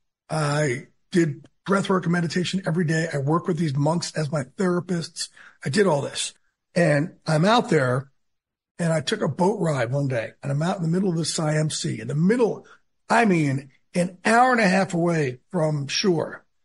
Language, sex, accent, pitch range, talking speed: English, male, American, 145-180 Hz, 195 wpm